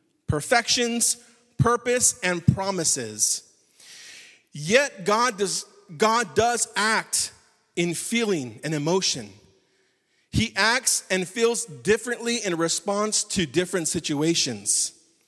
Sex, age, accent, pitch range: male, 40-59, American, 175-225 Hz